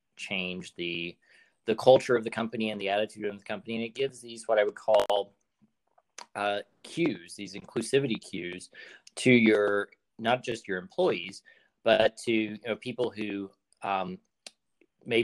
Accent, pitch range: American, 95-120 Hz